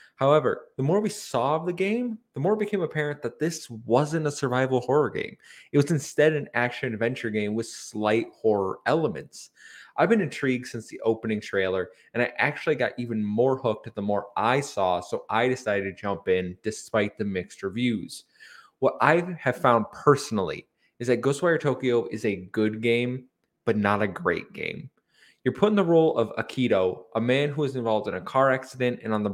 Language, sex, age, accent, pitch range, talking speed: English, male, 20-39, American, 110-145 Hz, 195 wpm